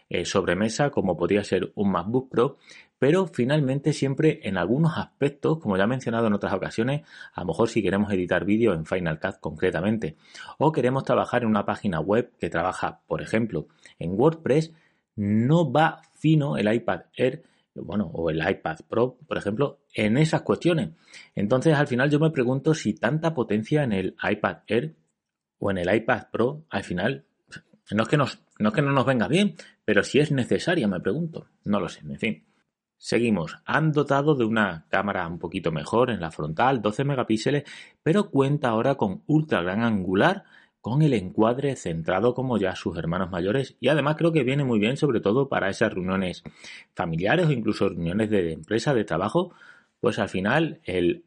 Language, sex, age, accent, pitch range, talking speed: Spanish, male, 30-49, Spanish, 100-150 Hz, 185 wpm